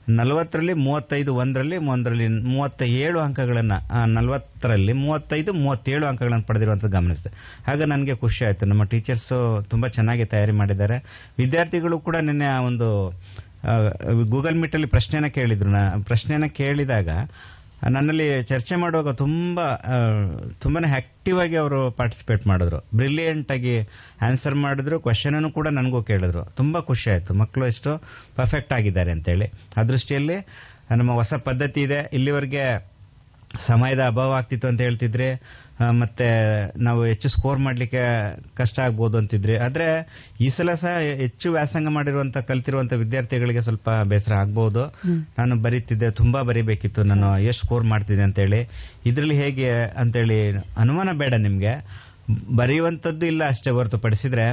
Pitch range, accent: 110-145 Hz, native